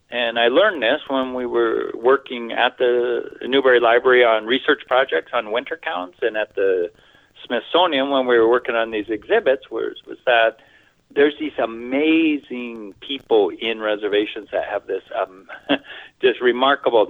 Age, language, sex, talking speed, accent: 50-69, English, male, 155 wpm, American